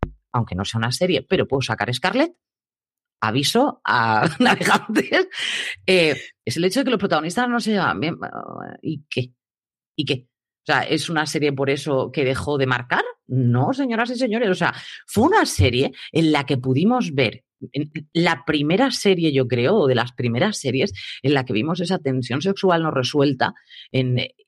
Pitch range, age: 135-200 Hz, 30-49